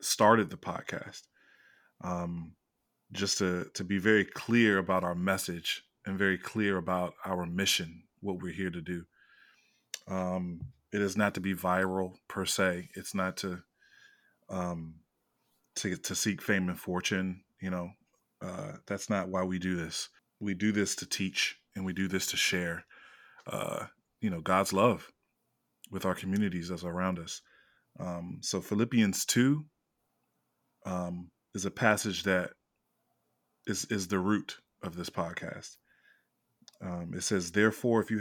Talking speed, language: 150 wpm, English